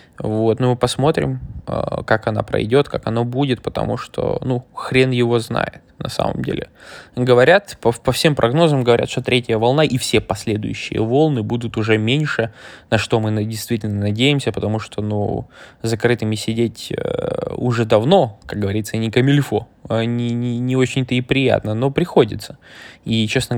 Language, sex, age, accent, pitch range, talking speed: Russian, male, 20-39, native, 110-125 Hz, 155 wpm